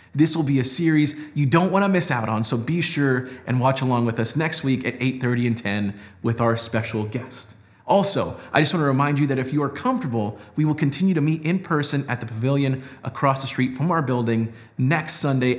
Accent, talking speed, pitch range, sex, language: American, 225 wpm, 120-155 Hz, male, English